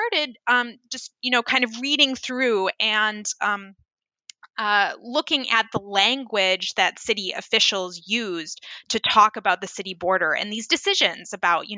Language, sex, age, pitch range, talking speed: English, female, 10-29, 205-265 Hz, 160 wpm